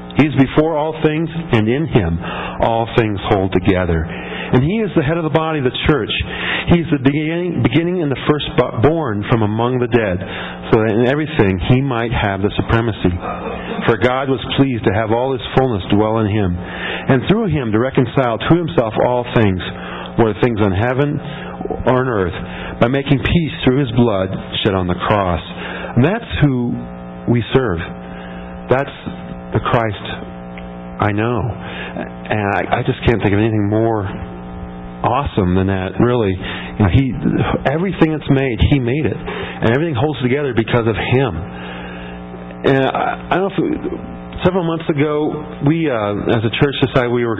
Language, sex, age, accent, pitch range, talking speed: English, male, 50-69, American, 85-135 Hz, 175 wpm